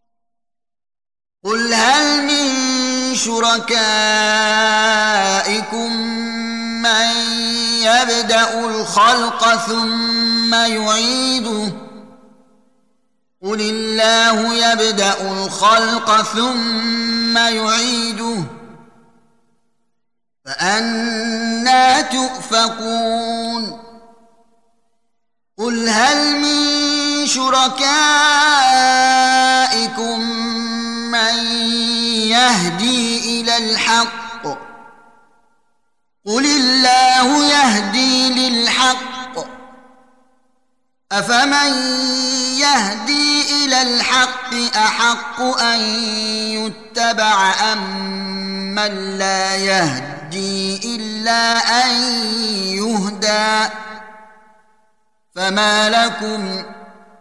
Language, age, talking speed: Arabic, 30-49, 45 wpm